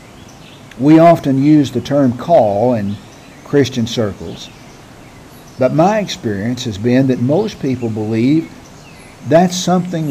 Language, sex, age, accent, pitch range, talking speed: English, male, 50-69, American, 115-145 Hz, 120 wpm